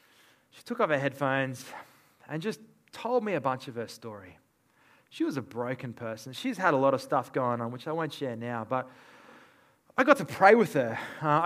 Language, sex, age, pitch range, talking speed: English, male, 20-39, 130-170 Hz, 210 wpm